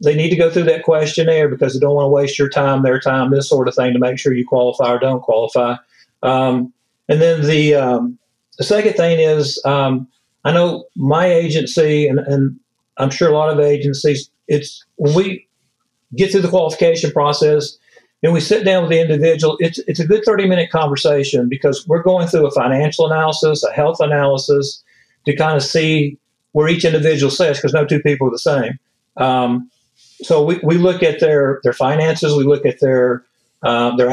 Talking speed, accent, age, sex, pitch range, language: 200 wpm, American, 50-69, male, 135-160 Hz, English